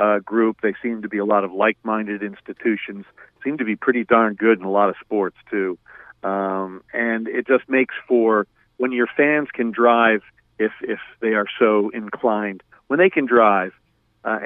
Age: 50-69